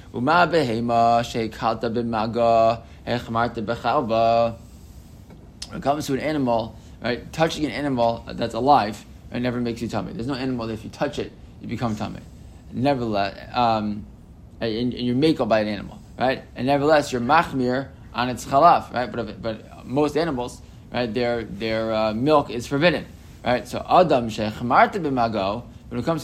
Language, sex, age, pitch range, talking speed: English, male, 20-39, 115-140 Hz, 150 wpm